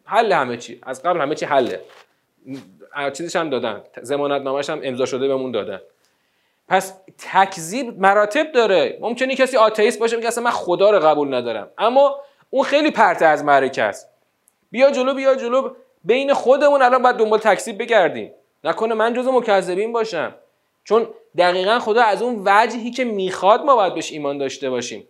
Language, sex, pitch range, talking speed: Persian, male, 145-235 Hz, 160 wpm